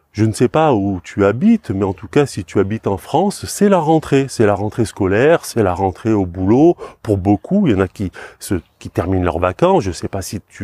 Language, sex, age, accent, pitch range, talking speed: French, male, 30-49, French, 95-140 Hz, 255 wpm